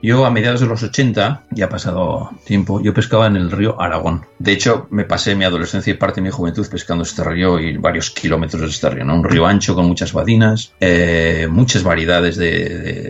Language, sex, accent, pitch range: Spanish, male, Spanish, 90-110 Hz